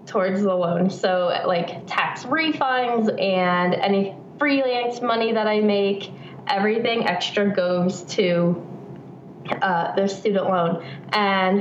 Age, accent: 20-39, American